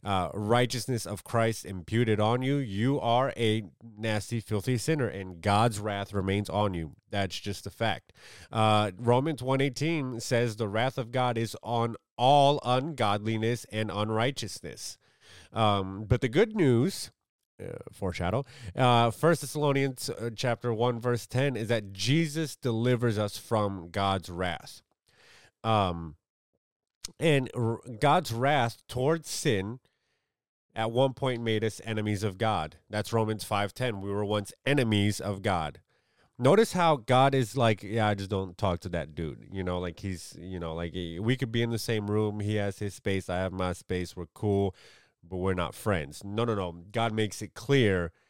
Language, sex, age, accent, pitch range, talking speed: English, male, 30-49, American, 100-125 Hz, 165 wpm